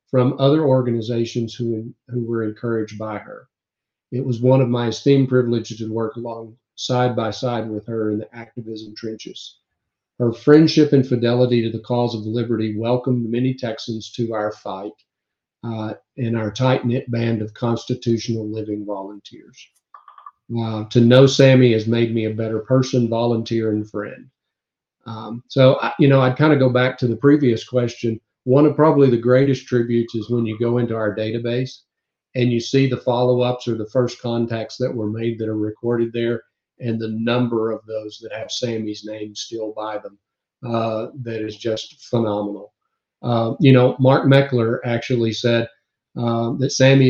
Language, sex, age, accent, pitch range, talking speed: English, male, 50-69, American, 110-125 Hz, 175 wpm